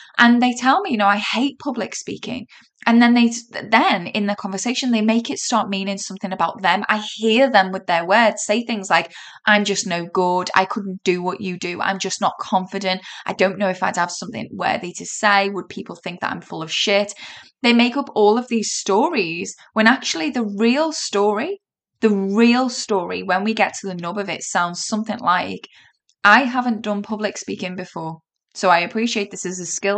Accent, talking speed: British, 210 wpm